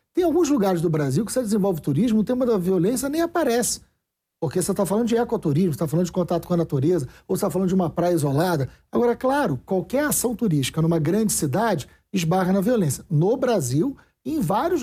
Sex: male